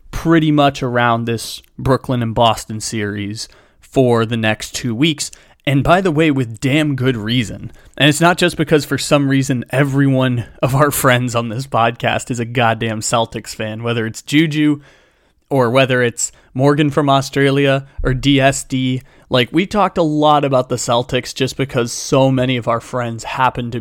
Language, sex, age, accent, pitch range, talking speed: English, male, 20-39, American, 120-150 Hz, 175 wpm